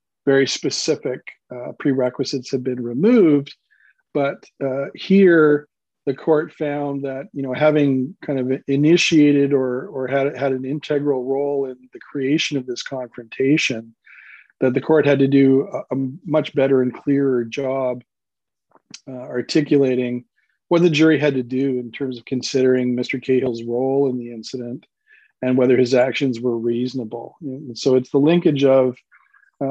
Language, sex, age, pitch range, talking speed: English, male, 40-59, 130-145 Hz, 155 wpm